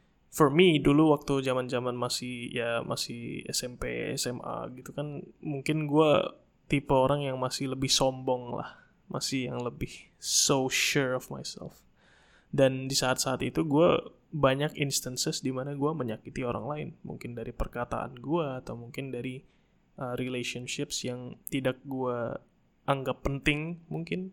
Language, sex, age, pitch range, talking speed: Indonesian, male, 20-39, 125-150 Hz, 135 wpm